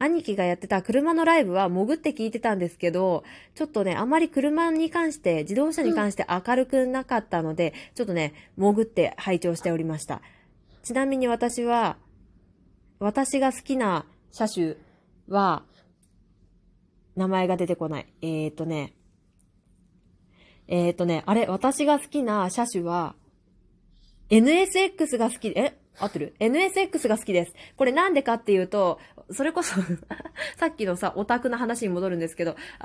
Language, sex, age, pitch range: Japanese, female, 20-39, 175-250 Hz